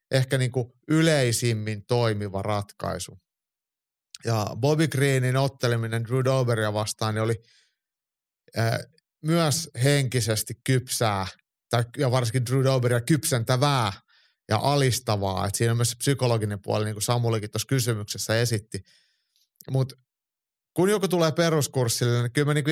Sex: male